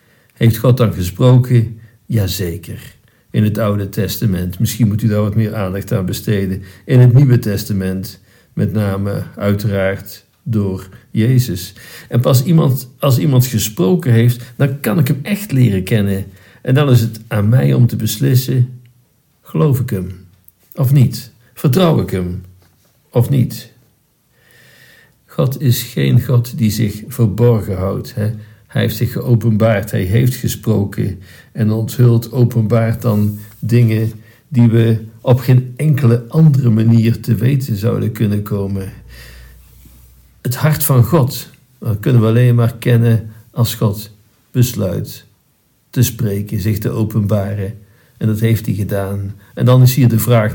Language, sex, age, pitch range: Dutch, male, 50-69, 105-125 Hz